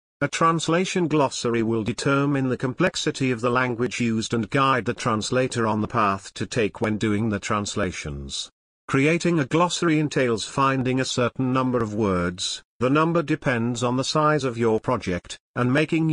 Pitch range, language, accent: 110-140 Hz, English, British